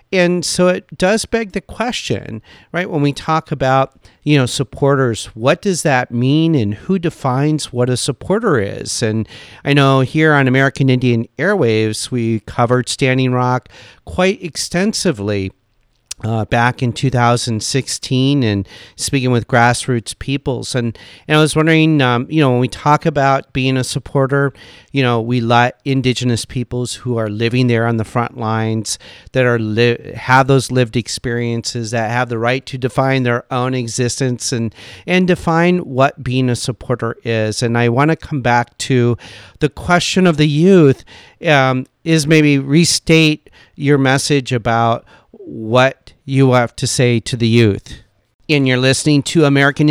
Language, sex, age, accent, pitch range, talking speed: English, male, 40-59, American, 120-145 Hz, 160 wpm